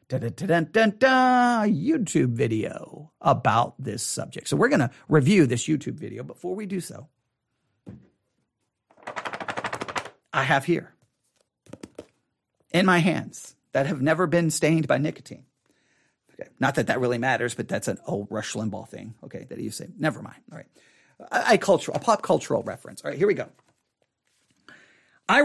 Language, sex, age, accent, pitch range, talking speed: English, male, 40-59, American, 160-250 Hz, 165 wpm